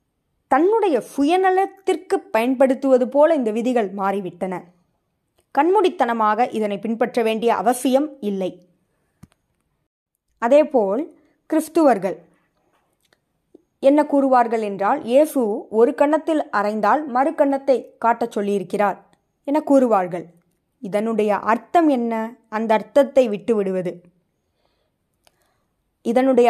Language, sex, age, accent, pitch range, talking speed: Tamil, female, 20-39, native, 205-280 Hz, 80 wpm